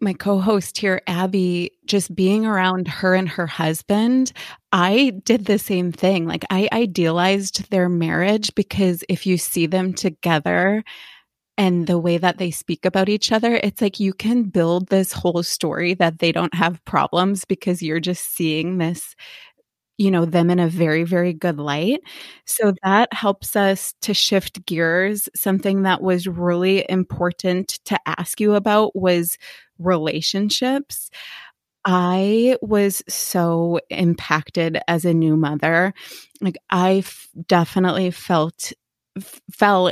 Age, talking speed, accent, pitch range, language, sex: 20-39, 145 wpm, American, 170-200 Hz, English, female